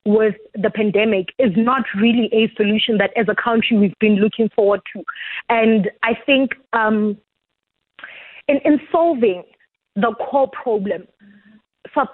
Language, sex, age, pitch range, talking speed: English, female, 20-39, 215-255 Hz, 140 wpm